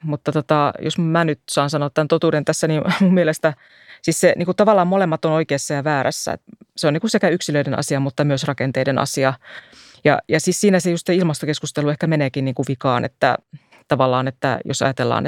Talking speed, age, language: 205 wpm, 30-49, Finnish